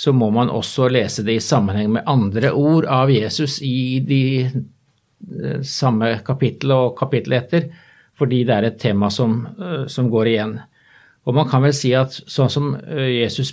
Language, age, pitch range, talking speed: English, 50-69, 115-140 Hz, 170 wpm